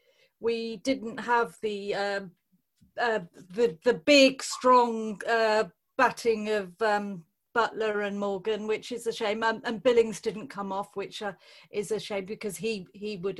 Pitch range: 200-245 Hz